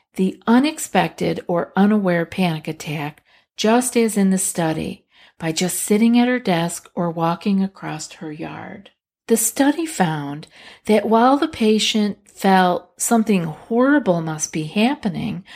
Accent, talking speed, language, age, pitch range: American, 135 wpm, English, 50-69, 185-240 Hz